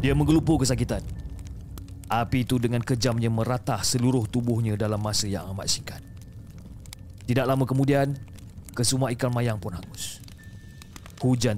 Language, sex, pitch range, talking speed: Malay, male, 90-120 Hz, 125 wpm